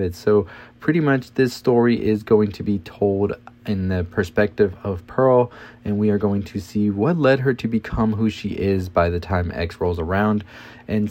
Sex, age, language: male, 30-49, English